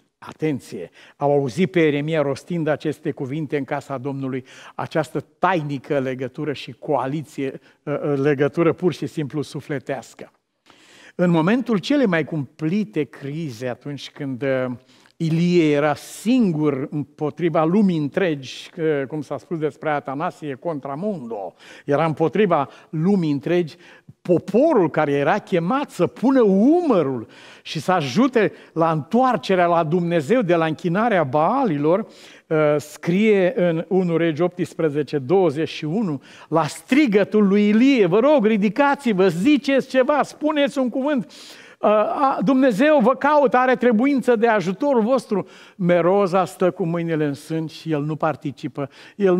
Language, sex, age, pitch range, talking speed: Romanian, male, 50-69, 150-220 Hz, 120 wpm